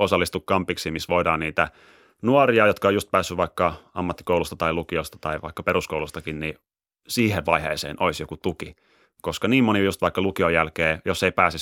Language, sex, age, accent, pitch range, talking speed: Finnish, male, 30-49, native, 80-95 Hz, 170 wpm